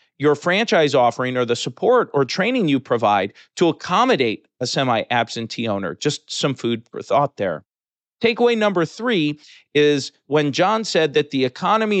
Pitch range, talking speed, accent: 130-170 Hz, 155 wpm, American